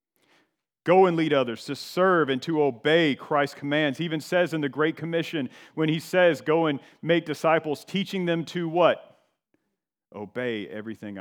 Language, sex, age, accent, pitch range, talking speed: English, male, 40-59, American, 140-170 Hz, 165 wpm